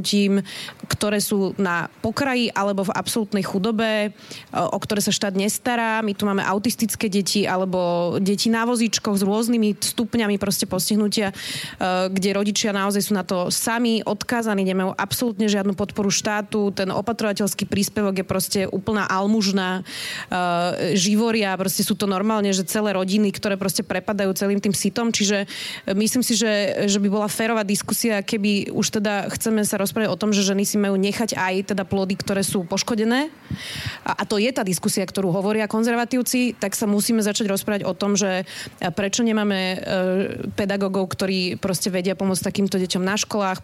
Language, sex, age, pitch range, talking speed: Slovak, female, 20-39, 190-215 Hz, 160 wpm